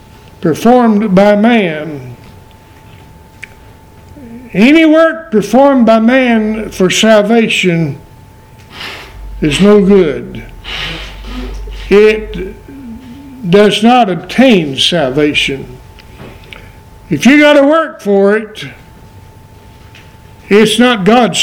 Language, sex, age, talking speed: English, male, 60-79, 80 wpm